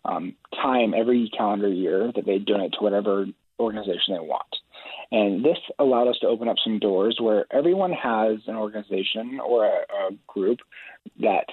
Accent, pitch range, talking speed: American, 105-130 Hz, 165 wpm